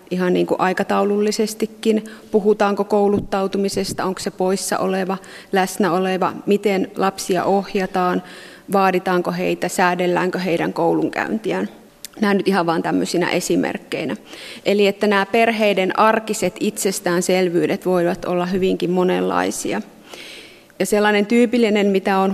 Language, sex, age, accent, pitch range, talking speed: Finnish, female, 30-49, native, 180-205 Hz, 110 wpm